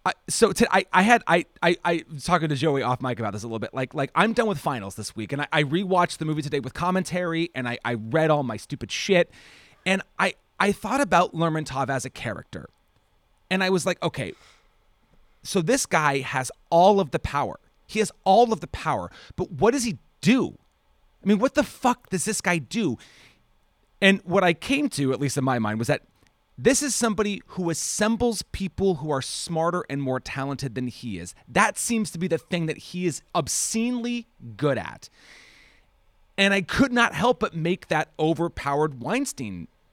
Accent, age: American, 30-49